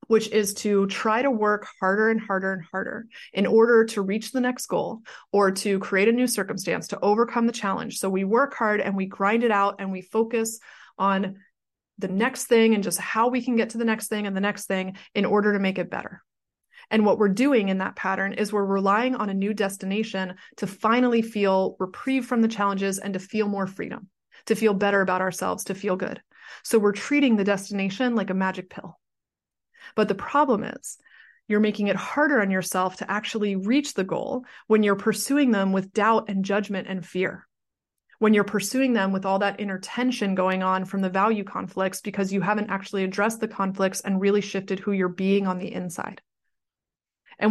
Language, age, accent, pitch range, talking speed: English, 20-39, American, 195-225 Hz, 205 wpm